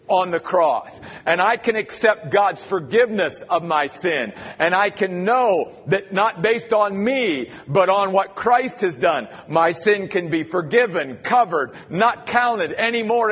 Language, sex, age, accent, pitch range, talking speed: English, male, 50-69, American, 165-220 Hz, 160 wpm